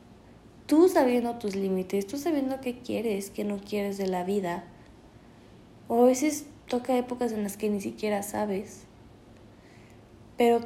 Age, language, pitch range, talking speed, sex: 20-39, Spanish, 200-255 Hz, 145 wpm, female